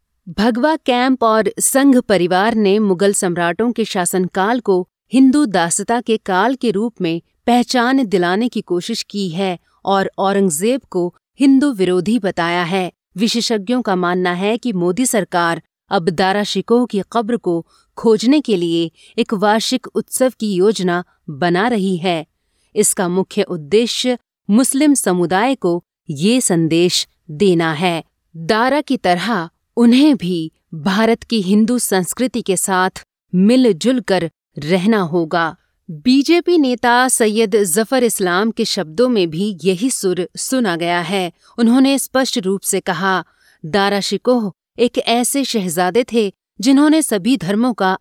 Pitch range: 185-240 Hz